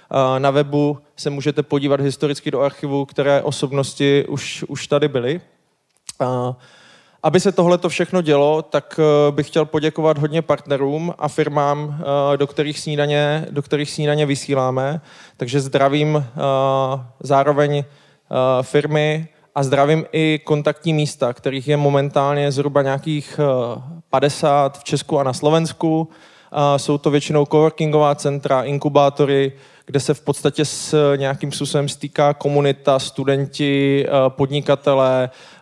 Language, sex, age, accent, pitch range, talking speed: Czech, male, 20-39, native, 135-150 Hz, 120 wpm